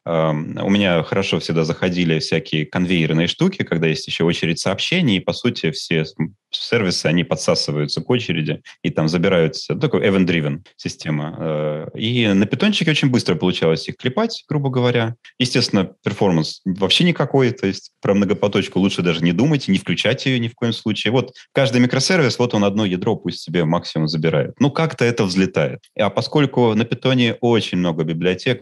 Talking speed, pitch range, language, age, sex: 170 wpm, 85-125 Hz, Russian, 30-49, male